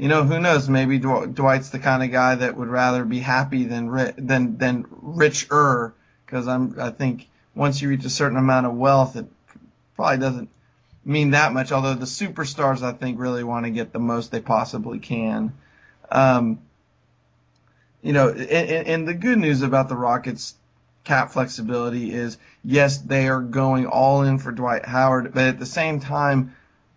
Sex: male